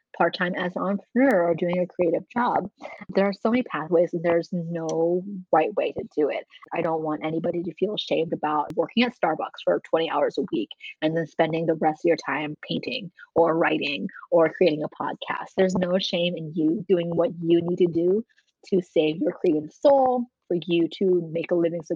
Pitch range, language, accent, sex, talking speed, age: 165-190 Hz, English, American, female, 210 wpm, 20-39